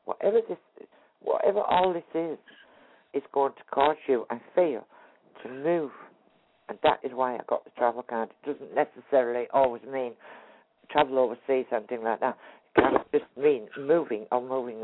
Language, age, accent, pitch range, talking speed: English, 60-79, British, 125-170 Hz, 170 wpm